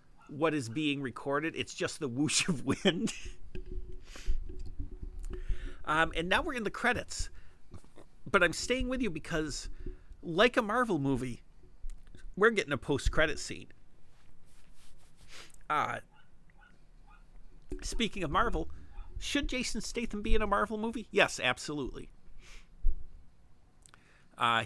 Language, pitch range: English, 90-155 Hz